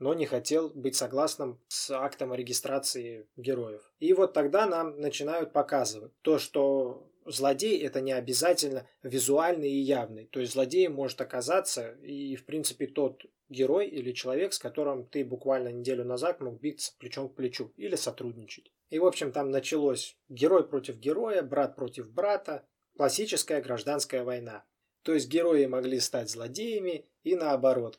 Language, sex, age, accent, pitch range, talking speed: Russian, male, 20-39, native, 125-150 Hz, 150 wpm